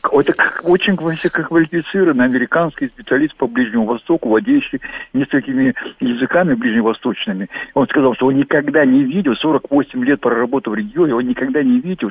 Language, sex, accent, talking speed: Russian, male, native, 140 wpm